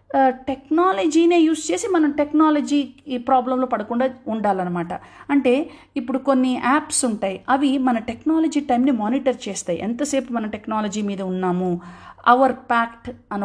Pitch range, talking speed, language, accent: 210-285 Hz, 120 wpm, Telugu, native